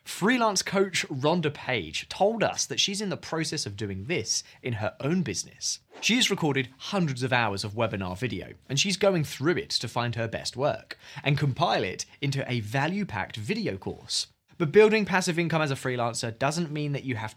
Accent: British